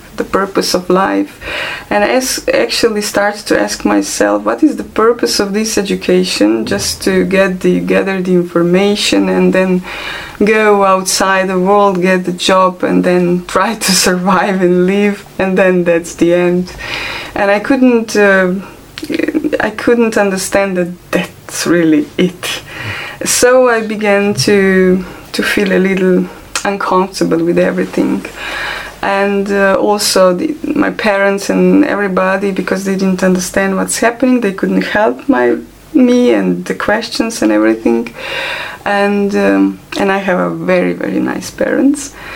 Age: 20-39